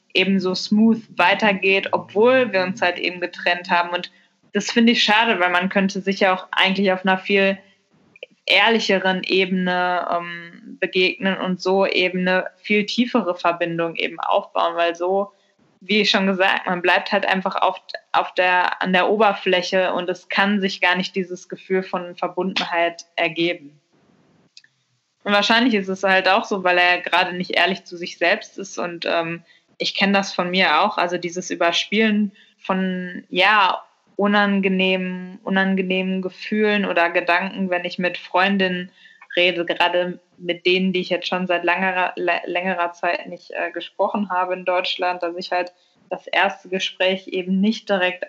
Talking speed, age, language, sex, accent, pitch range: 160 wpm, 10-29, German, female, German, 175-195 Hz